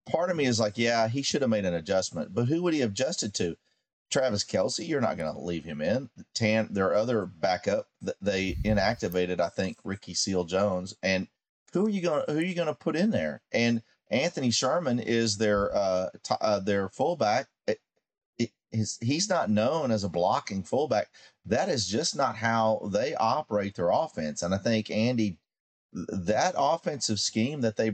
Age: 40-59